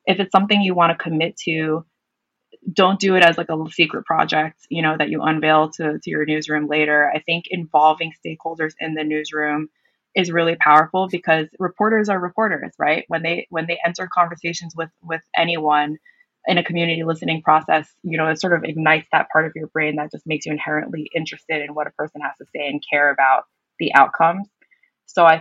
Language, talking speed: English, 205 wpm